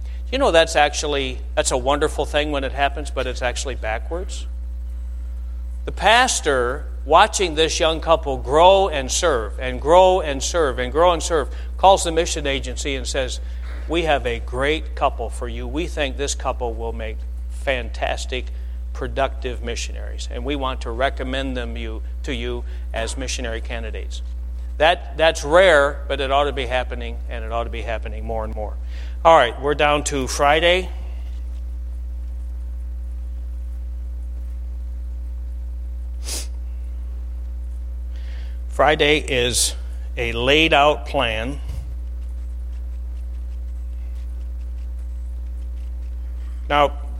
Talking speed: 125 wpm